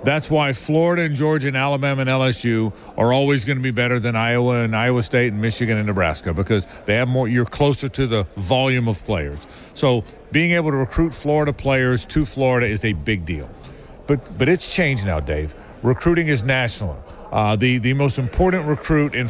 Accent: American